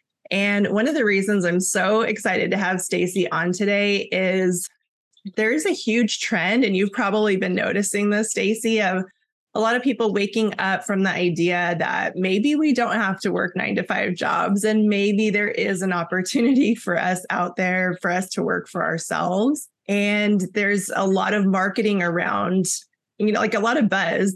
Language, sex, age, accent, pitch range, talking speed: English, female, 20-39, American, 185-220 Hz, 190 wpm